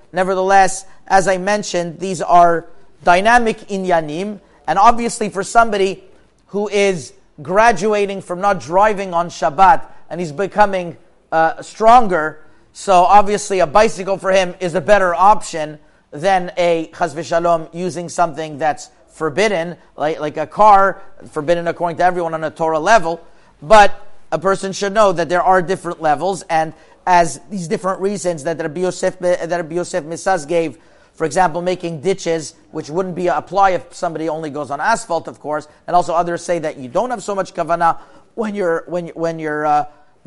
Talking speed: 170 wpm